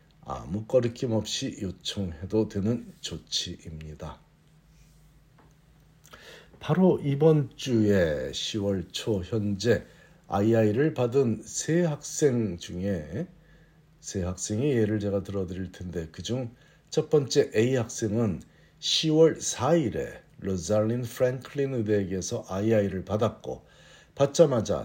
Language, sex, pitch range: Korean, male, 100-150 Hz